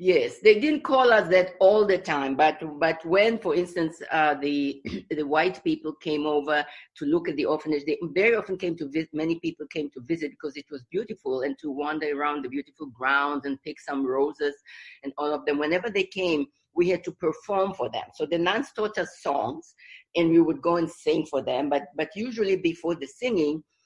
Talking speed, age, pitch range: 215 wpm, 50-69, 140-175 Hz